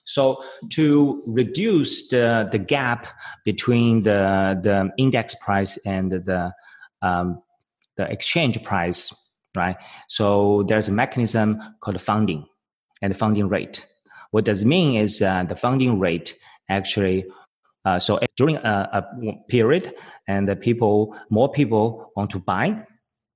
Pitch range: 100-120 Hz